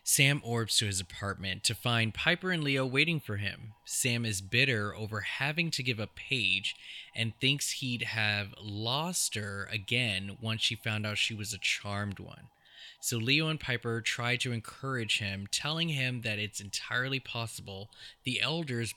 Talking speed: 170 wpm